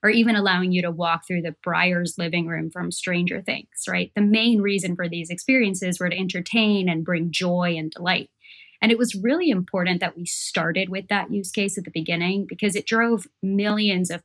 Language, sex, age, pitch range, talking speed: English, female, 20-39, 175-205 Hz, 205 wpm